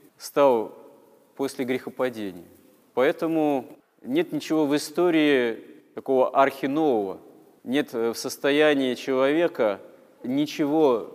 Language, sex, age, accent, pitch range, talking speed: Russian, male, 30-49, native, 115-150 Hz, 80 wpm